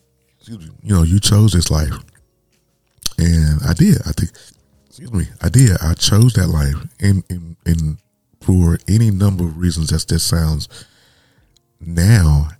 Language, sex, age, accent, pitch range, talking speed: English, male, 30-49, American, 80-105 Hz, 150 wpm